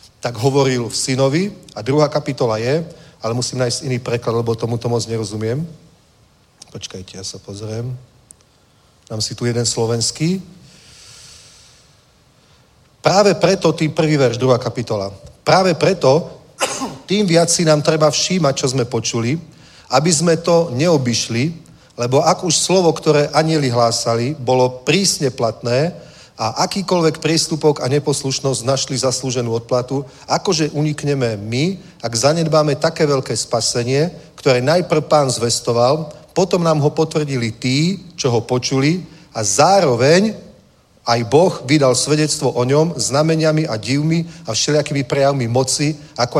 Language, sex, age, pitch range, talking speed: Czech, male, 40-59, 120-155 Hz, 135 wpm